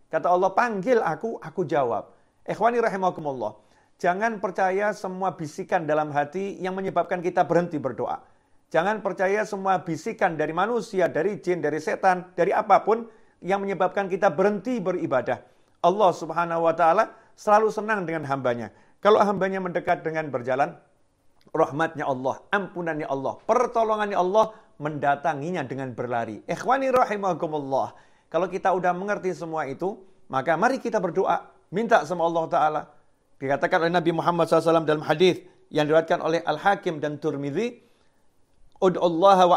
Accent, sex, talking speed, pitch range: native, male, 140 wpm, 160-195 Hz